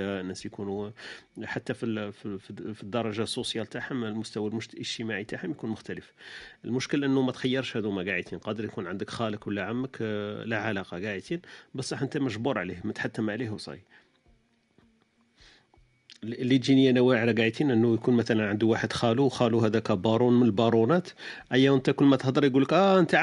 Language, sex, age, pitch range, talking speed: Arabic, male, 40-59, 110-135 Hz, 160 wpm